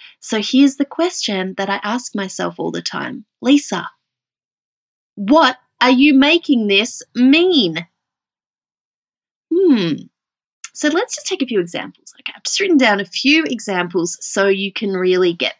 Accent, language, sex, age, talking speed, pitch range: Australian, English, female, 30-49, 150 wpm, 195-280 Hz